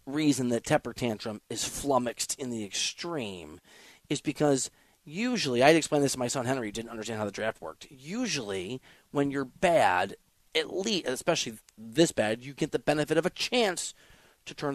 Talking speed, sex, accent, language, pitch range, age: 180 wpm, male, American, English, 115-165 Hz, 30-49